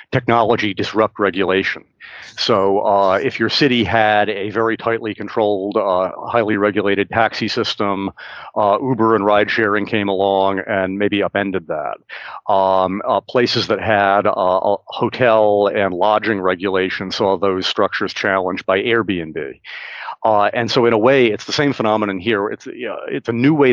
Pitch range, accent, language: 95-115 Hz, American, English